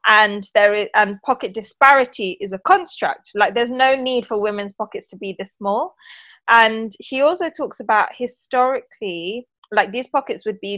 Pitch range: 200-260 Hz